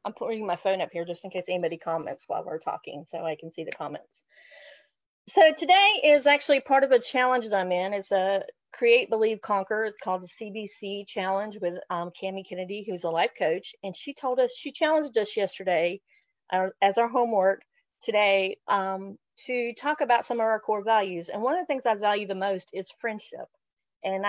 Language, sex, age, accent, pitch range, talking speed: English, female, 30-49, American, 185-220 Hz, 205 wpm